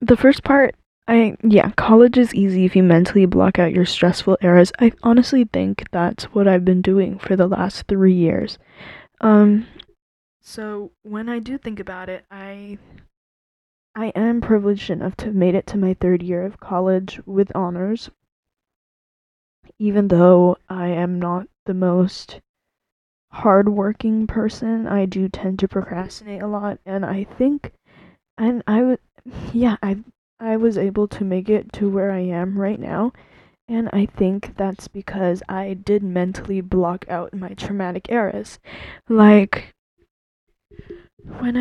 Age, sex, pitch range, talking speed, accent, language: 20-39, female, 185-220 Hz, 150 wpm, American, English